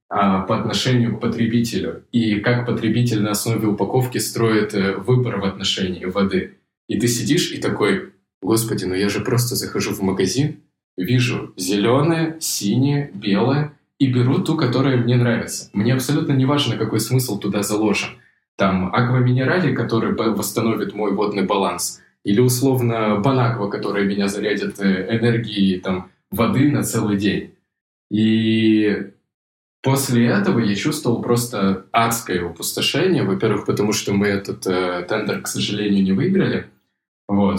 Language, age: Russian, 20-39